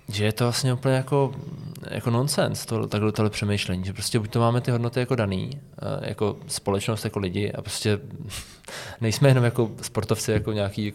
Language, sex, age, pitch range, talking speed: Czech, male, 20-39, 105-120 Hz, 180 wpm